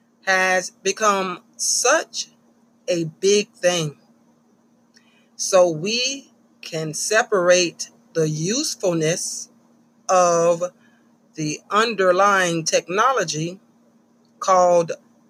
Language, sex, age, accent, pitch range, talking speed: English, female, 30-49, American, 175-240 Hz, 65 wpm